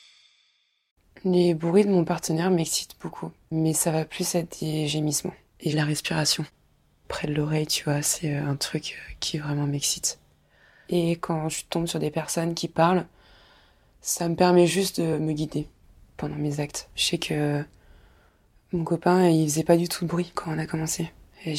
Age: 20-39